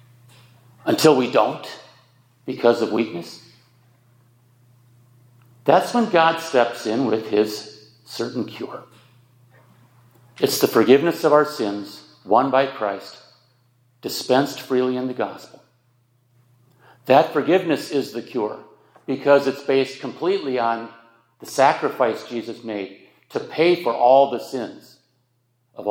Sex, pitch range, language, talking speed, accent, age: male, 120-130 Hz, English, 115 wpm, American, 50-69